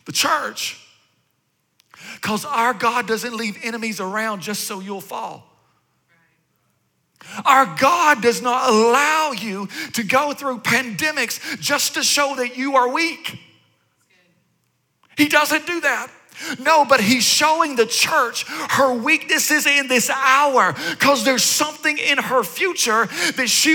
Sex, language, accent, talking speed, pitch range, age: male, English, American, 135 wpm, 250-300 Hz, 40-59